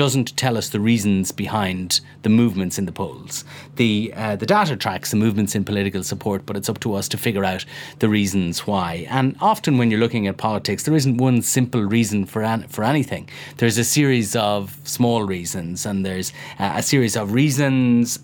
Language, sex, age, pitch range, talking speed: English, male, 30-49, 100-135 Hz, 200 wpm